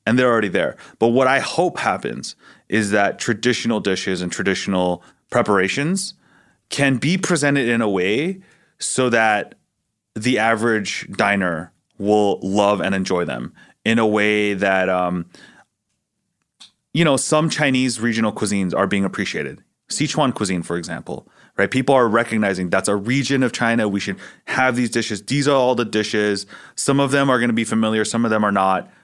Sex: male